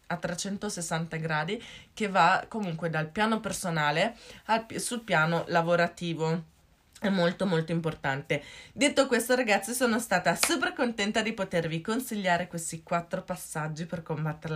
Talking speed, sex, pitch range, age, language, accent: 130 wpm, female, 160-190 Hz, 20-39, Italian, native